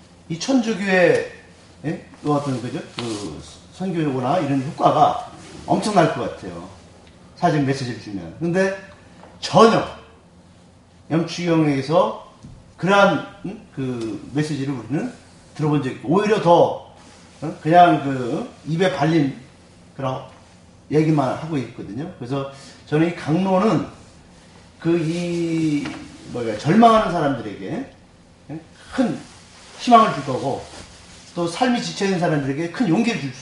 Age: 40-59